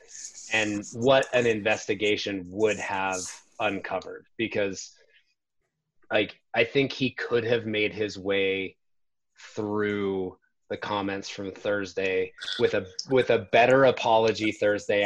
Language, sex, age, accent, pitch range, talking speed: English, male, 30-49, American, 100-130 Hz, 115 wpm